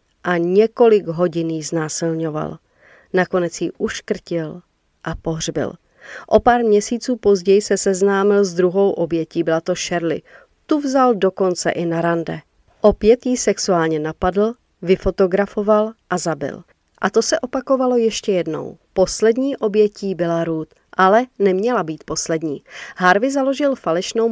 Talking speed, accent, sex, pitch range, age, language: 125 wpm, native, female, 170-220 Hz, 40-59, Czech